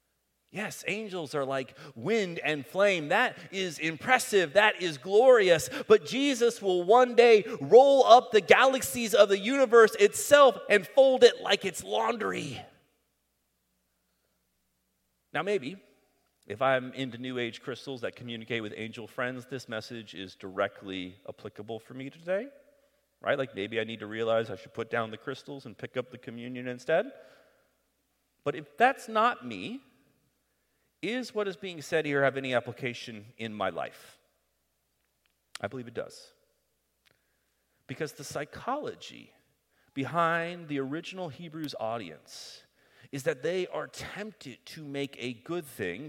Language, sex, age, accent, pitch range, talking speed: English, male, 30-49, American, 120-205 Hz, 145 wpm